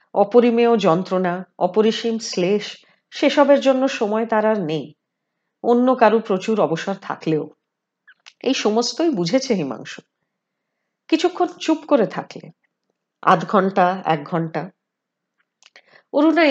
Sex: female